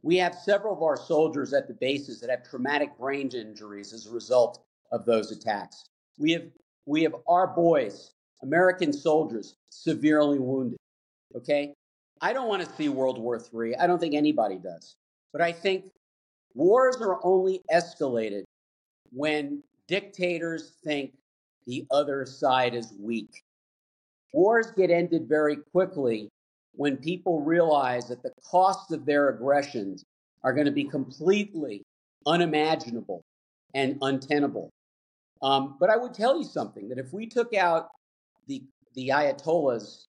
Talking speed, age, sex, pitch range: 145 wpm, 50-69, male, 125-170 Hz